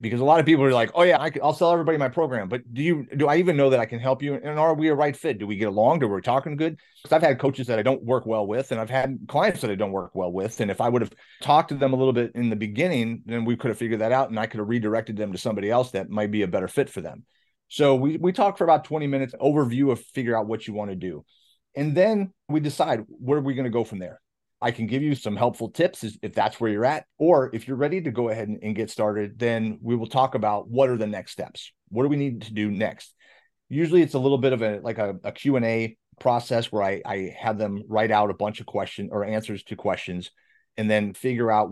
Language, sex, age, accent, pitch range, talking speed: English, male, 30-49, American, 105-135 Hz, 285 wpm